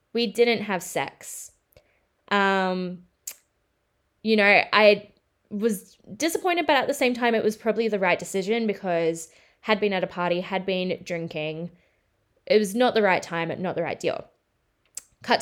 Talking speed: 160 wpm